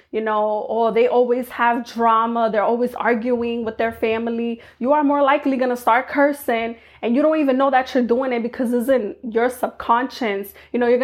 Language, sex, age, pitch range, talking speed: English, female, 20-39, 225-265 Hz, 205 wpm